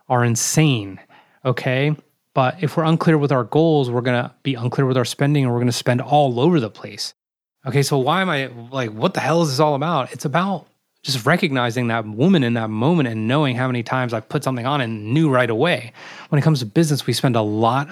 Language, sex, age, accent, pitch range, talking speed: English, male, 20-39, American, 115-145 Hz, 240 wpm